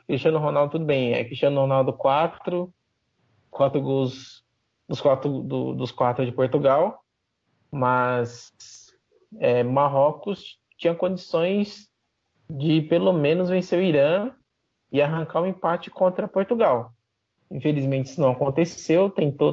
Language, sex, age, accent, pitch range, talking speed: English, male, 20-39, Brazilian, 125-170 Hz, 125 wpm